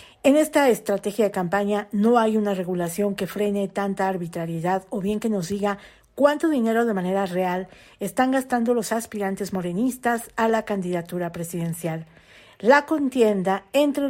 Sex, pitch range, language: female, 190-240 Hz, Spanish